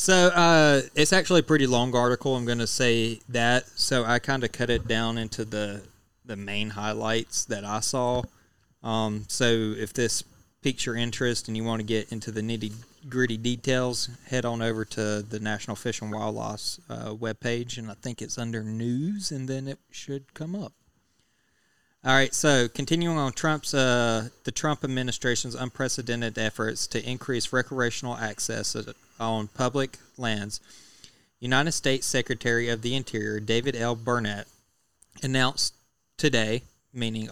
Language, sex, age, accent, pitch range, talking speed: English, male, 20-39, American, 110-130 Hz, 160 wpm